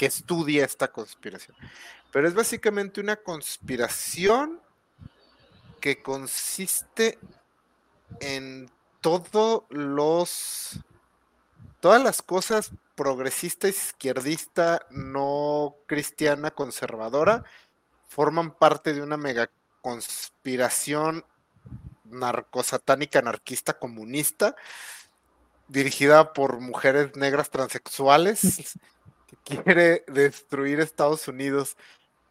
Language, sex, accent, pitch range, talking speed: Spanish, male, Mexican, 125-155 Hz, 75 wpm